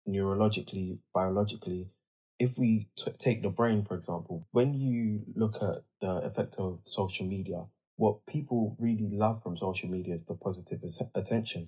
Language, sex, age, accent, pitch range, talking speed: English, male, 20-39, British, 95-120 Hz, 155 wpm